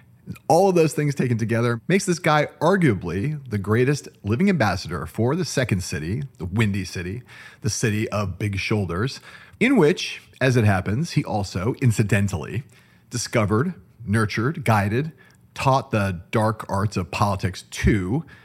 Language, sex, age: English, male, 40-59